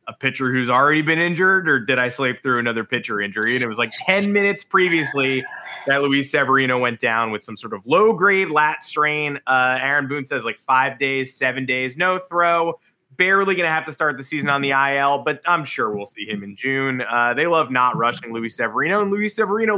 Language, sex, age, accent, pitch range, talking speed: English, male, 20-39, American, 130-185 Hz, 225 wpm